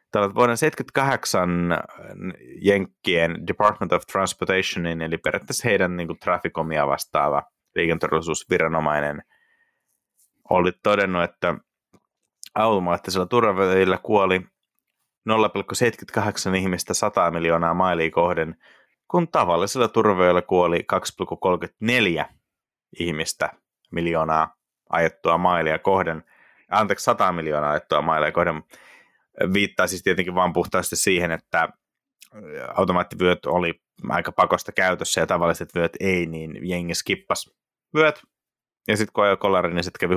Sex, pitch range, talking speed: male, 85-100 Hz, 105 wpm